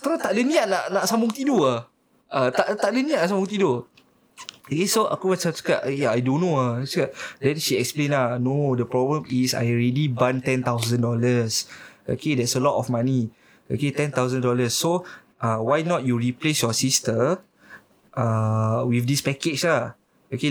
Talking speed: 175 wpm